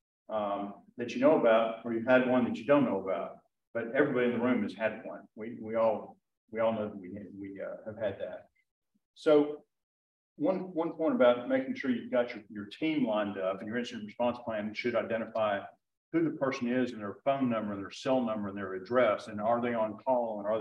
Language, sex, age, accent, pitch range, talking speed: English, male, 50-69, American, 110-130 Hz, 225 wpm